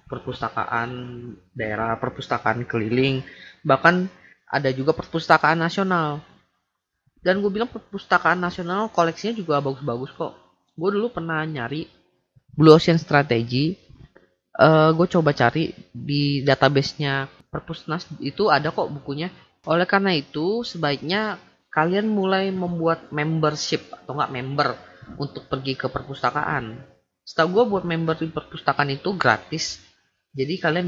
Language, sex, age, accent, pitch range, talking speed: Indonesian, female, 20-39, native, 130-165 Hz, 120 wpm